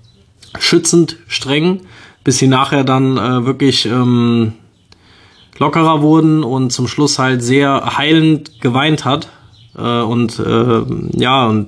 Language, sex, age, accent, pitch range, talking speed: German, male, 20-39, German, 115-140 Hz, 125 wpm